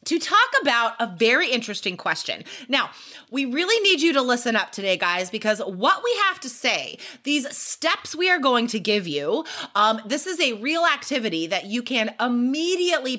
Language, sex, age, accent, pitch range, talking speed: English, female, 30-49, American, 190-290 Hz, 185 wpm